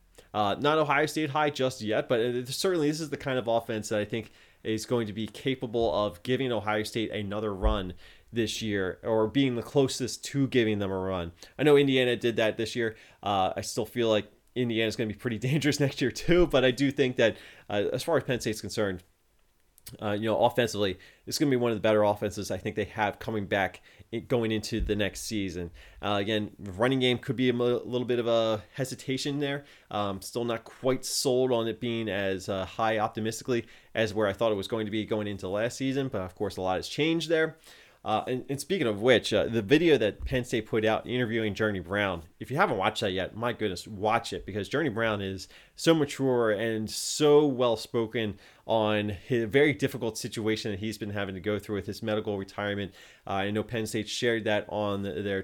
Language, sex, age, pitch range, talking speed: English, male, 20-39, 105-130 Hz, 220 wpm